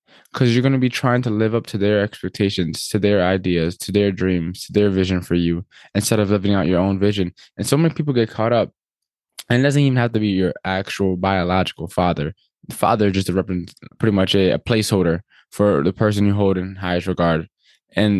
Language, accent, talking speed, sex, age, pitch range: English, American, 215 wpm, male, 10-29, 95-120 Hz